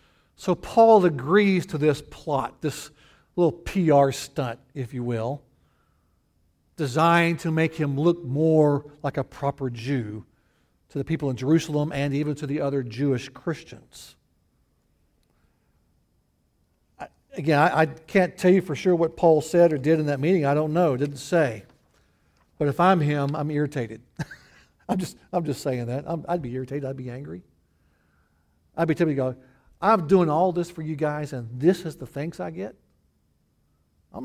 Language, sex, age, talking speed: English, male, 60-79, 165 wpm